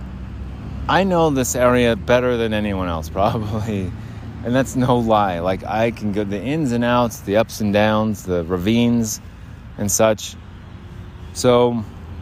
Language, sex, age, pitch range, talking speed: English, male, 30-49, 90-115 Hz, 145 wpm